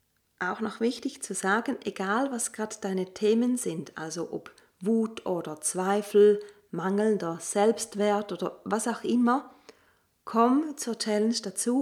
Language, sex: German, female